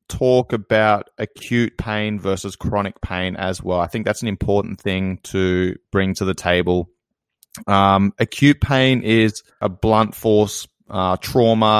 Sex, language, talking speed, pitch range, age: male, English, 145 wpm, 95-105 Hz, 20-39